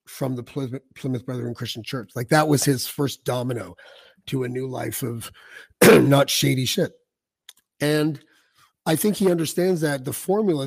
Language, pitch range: English, 130-165 Hz